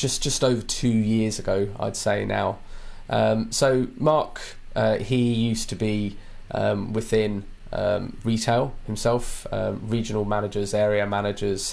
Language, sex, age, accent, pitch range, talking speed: English, male, 20-39, British, 100-120 Hz, 140 wpm